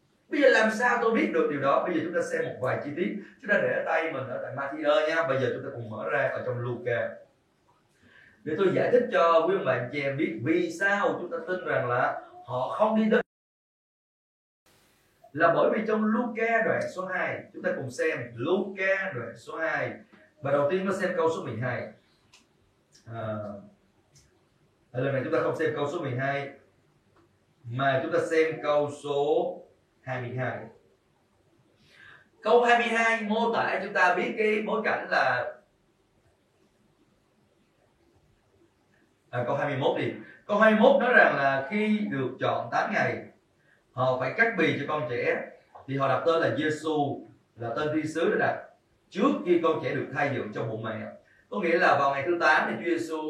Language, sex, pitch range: Vietnamese, male, 135-220 Hz